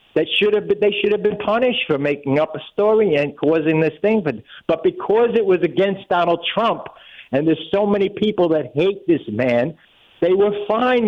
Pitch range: 160-225 Hz